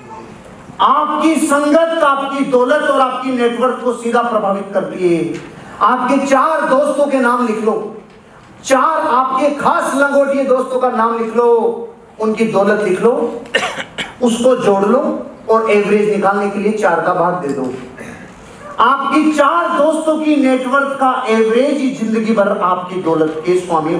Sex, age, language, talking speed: male, 40-59, Hindi, 150 wpm